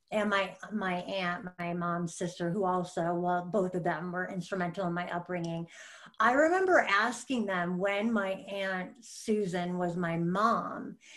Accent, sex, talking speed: American, female, 155 wpm